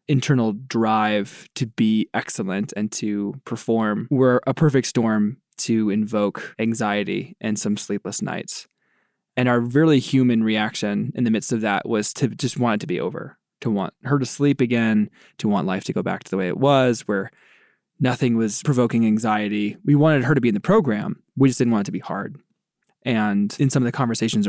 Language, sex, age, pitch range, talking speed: English, male, 20-39, 105-135 Hz, 200 wpm